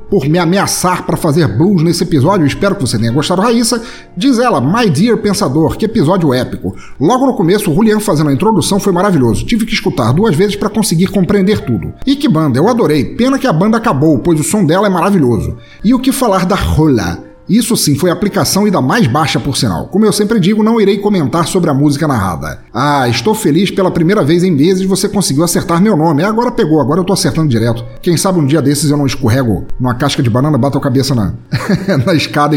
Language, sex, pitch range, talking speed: Portuguese, male, 145-195 Hz, 225 wpm